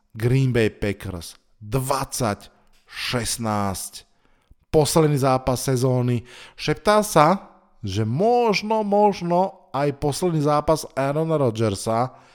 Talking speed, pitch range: 85 wpm, 115-140 Hz